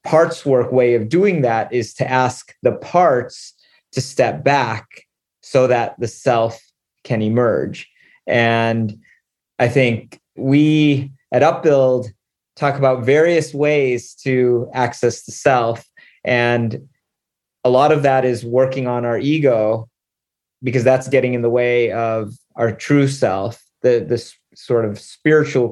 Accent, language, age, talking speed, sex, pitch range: American, English, 30-49, 140 wpm, male, 120-140 Hz